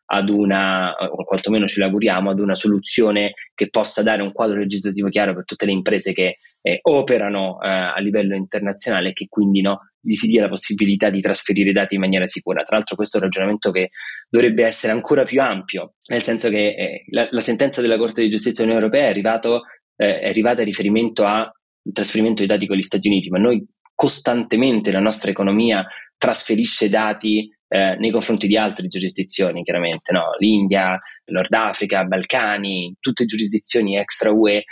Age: 20-39